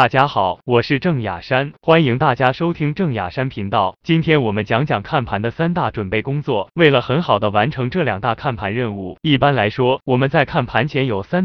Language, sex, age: Chinese, male, 20-39